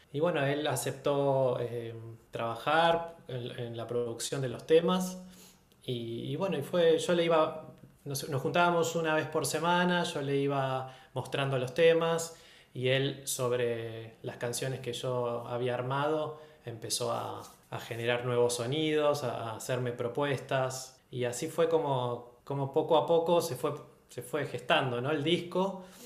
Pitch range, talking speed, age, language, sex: 125-155 Hz, 160 wpm, 20-39, Spanish, male